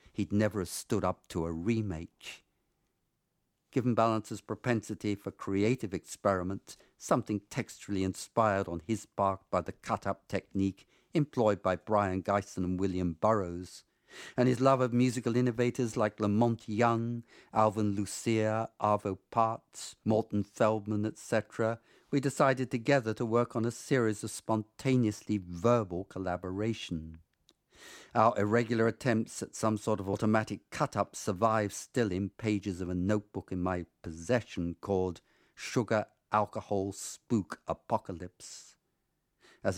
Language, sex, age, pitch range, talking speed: English, male, 50-69, 95-115 Hz, 125 wpm